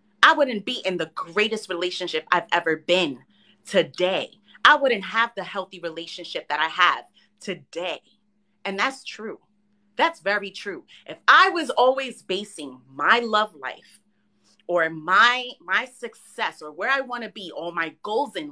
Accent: American